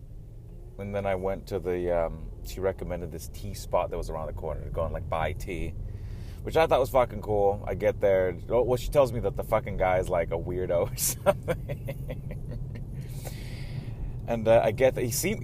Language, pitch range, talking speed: English, 95-125 Hz, 205 wpm